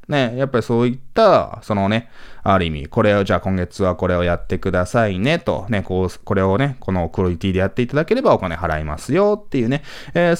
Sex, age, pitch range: male, 20-39, 90-125 Hz